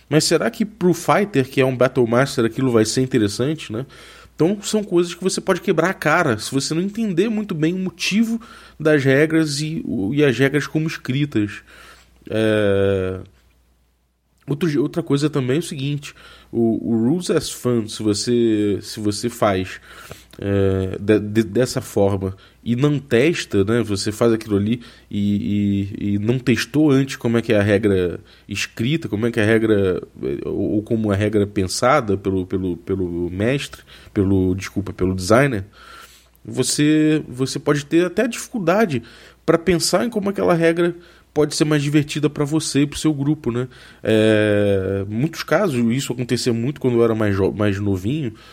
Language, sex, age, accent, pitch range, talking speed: Portuguese, male, 20-39, Brazilian, 105-155 Hz, 175 wpm